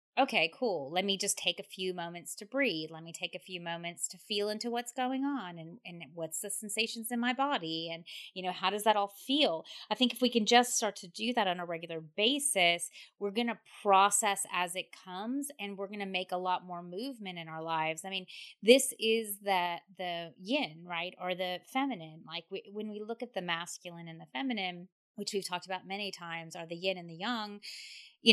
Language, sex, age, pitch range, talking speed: English, female, 30-49, 170-220 Hz, 225 wpm